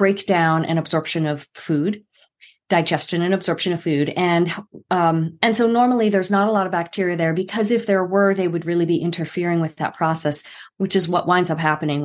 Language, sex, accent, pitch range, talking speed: English, female, American, 160-200 Hz, 200 wpm